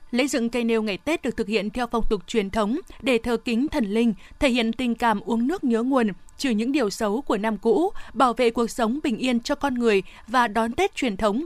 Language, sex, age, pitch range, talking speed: Vietnamese, female, 20-39, 220-265 Hz, 250 wpm